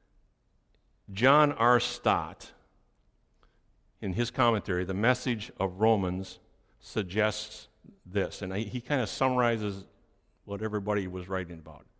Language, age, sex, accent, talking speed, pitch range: English, 60-79, male, American, 115 wpm, 95-120 Hz